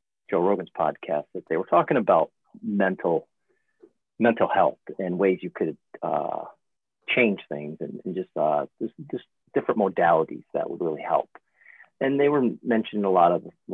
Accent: American